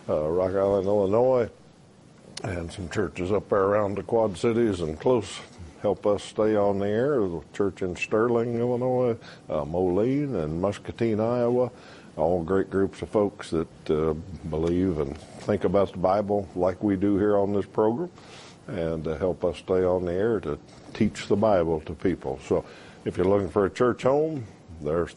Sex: male